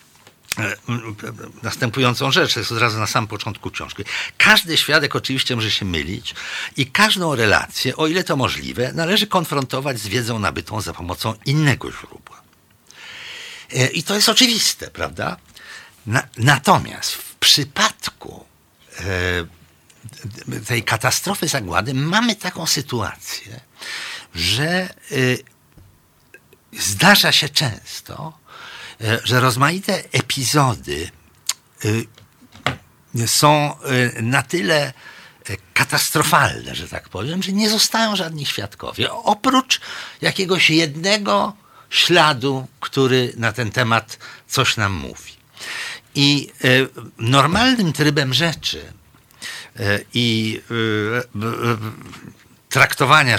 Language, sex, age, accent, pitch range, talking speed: Polish, male, 60-79, native, 110-160 Hz, 90 wpm